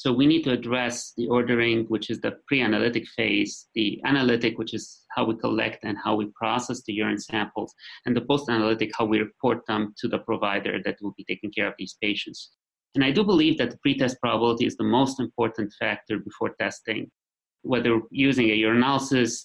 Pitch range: 110-130 Hz